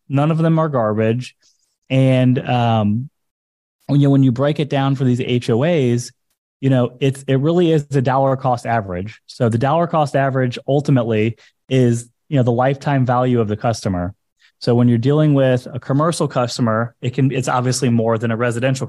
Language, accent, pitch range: English, American, 115-140 Hz